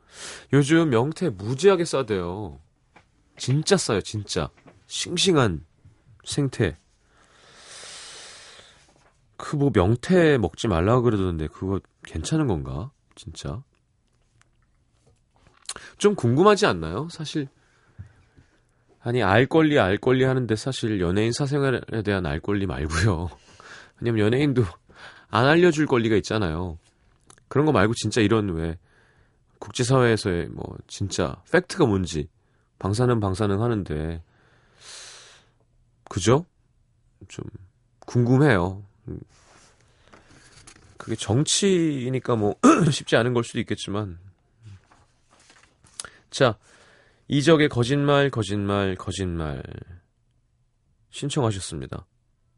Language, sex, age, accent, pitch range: Korean, male, 30-49, native, 100-130 Hz